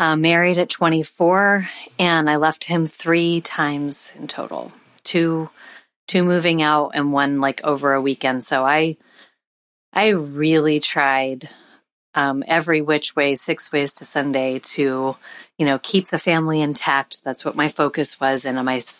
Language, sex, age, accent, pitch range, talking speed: English, female, 30-49, American, 135-160 Hz, 155 wpm